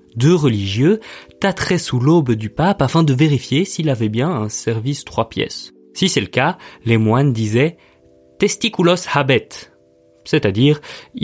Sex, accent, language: male, French, French